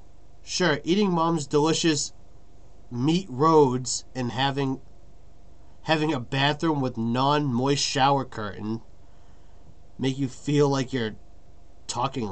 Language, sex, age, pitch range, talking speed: English, male, 30-49, 110-155 Hz, 105 wpm